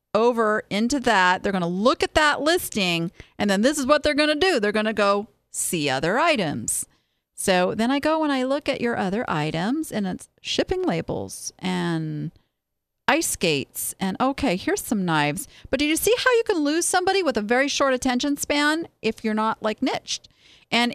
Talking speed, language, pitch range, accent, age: 200 wpm, English, 190-270 Hz, American, 40-59